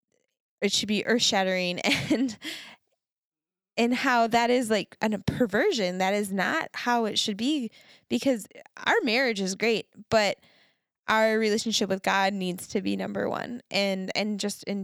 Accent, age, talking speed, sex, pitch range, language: American, 10-29, 160 wpm, female, 195-235 Hz, English